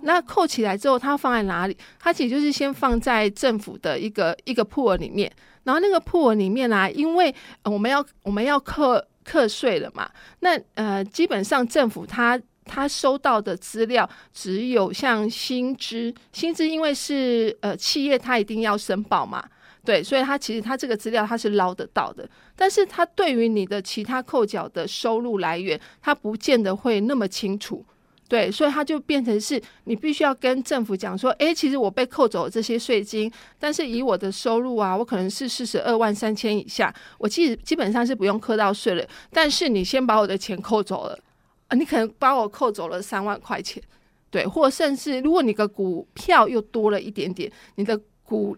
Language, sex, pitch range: Chinese, female, 210-275 Hz